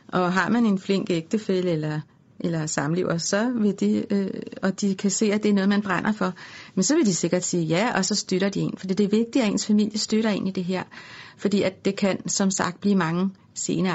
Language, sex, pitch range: Danish, female, 180-210 Hz